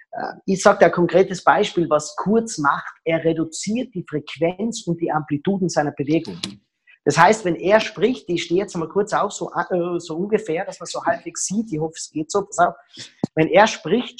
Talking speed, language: 190 wpm, German